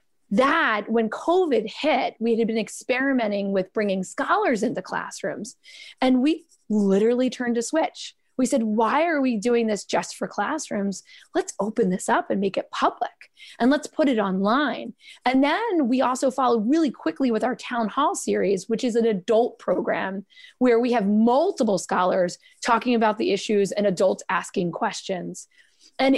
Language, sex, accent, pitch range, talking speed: English, female, American, 225-295 Hz, 165 wpm